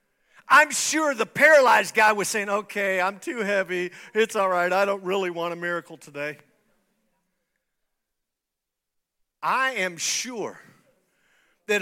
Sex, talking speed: male, 125 wpm